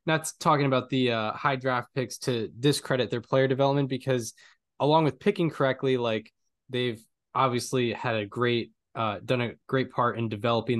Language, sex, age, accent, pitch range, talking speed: English, male, 10-29, American, 110-130 Hz, 170 wpm